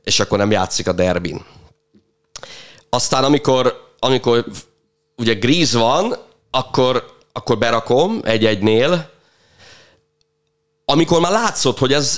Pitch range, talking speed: 105-150 Hz, 105 wpm